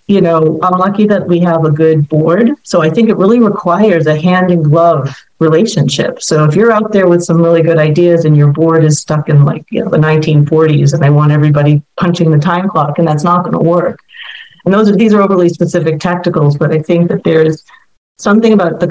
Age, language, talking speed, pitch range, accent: 40-59, English, 220 wpm, 155-180 Hz, American